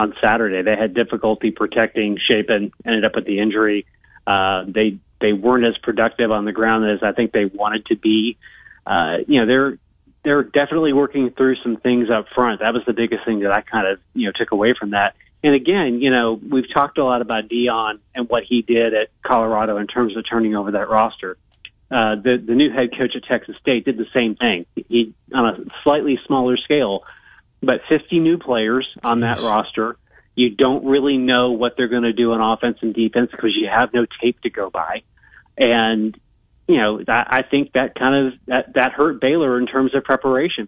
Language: English